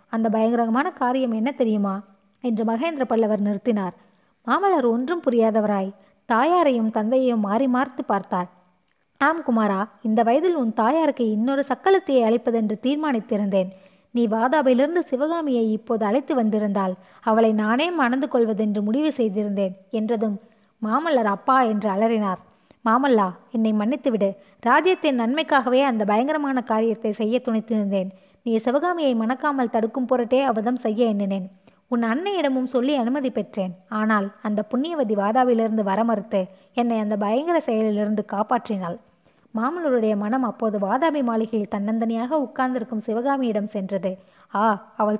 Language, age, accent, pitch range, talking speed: Tamil, 20-39, native, 210-260 Hz, 115 wpm